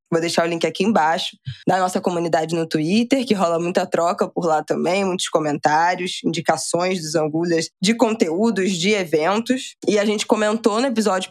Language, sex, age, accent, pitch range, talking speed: Portuguese, female, 20-39, Brazilian, 165-210 Hz, 175 wpm